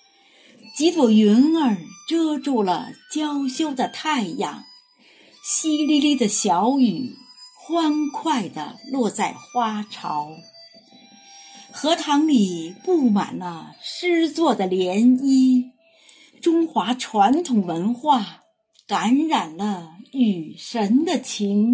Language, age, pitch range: Chinese, 50-69, 210-295 Hz